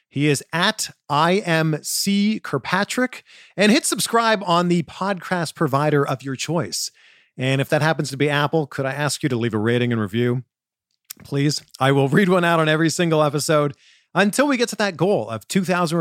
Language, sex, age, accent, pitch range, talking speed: English, male, 40-59, American, 135-190 Hz, 185 wpm